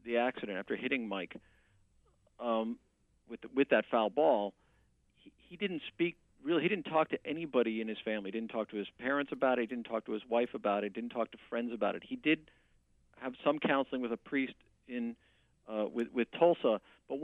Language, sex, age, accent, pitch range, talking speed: English, male, 50-69, American, 115-150 Hz, 215 wpm